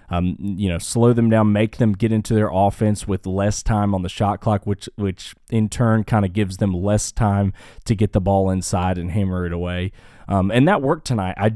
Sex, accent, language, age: male, American, English, 20-39